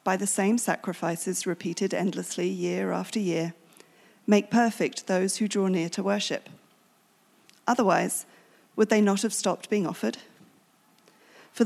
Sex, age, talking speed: female, 40-59, 135 wpm